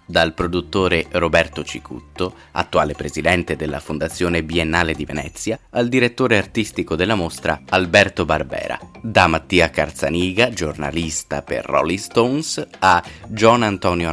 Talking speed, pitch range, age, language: 120 wpm, 80-105 Hz, 30-49, Italian